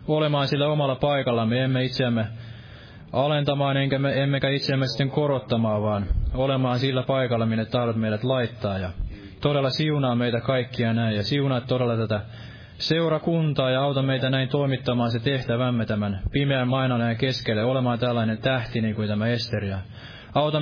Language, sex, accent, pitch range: Finnish, male, native, 115-135 Hz